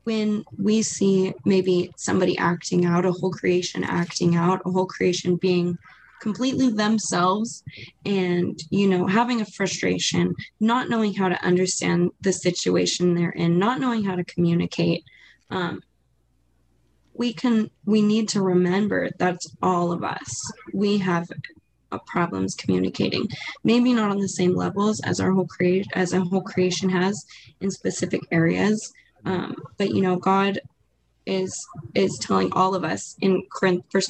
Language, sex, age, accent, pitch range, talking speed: English, female, 20-39, American, 175-205 Hz, 150 wpm